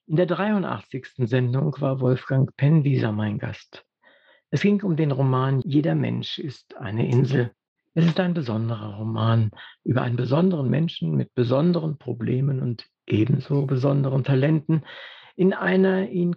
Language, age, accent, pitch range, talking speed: German, 60-79, German, 125-165 Hz, 140 wpm